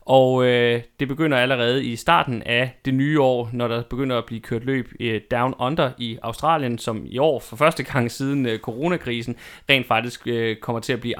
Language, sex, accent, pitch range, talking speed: Danish, male, native, 120-145 Hz, 190 wpm